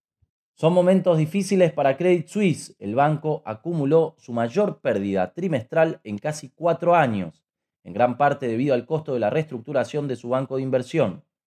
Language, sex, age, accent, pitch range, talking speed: Spanish, male, 20-39, Argentinian, 125-160 Hz, 160 wpm